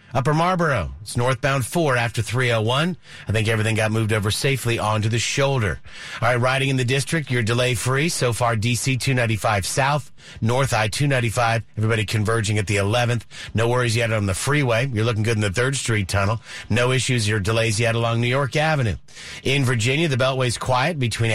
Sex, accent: male, American